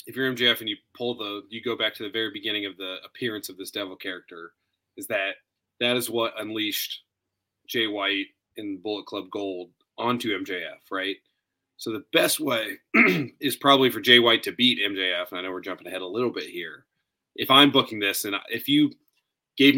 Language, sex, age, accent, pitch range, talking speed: English, male, 30-49, American, 100-125 Hz, 200 wpm